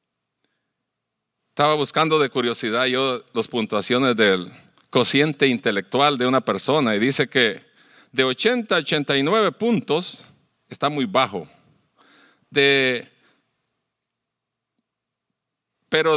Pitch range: 155-215 Hz